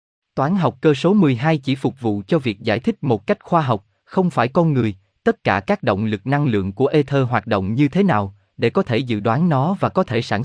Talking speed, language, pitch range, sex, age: 255 wpm, Vietnamese, 110-160 Hz, male, 20-39